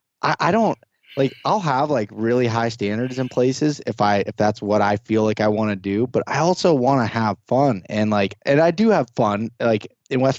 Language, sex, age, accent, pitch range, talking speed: English, male, 20-39, American, 100-120 Hz, 230 wpm